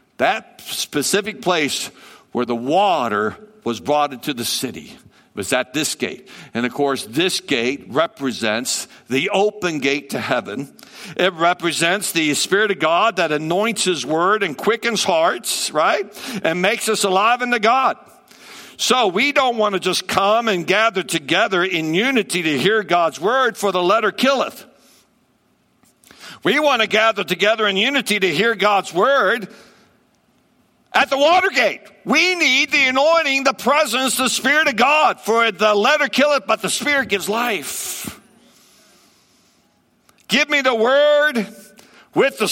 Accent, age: American, 60-79